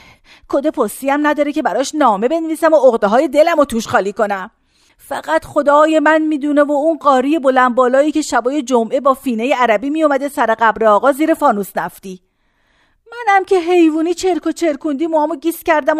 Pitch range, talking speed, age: 240-325 Hz, 175 wpm, 40-59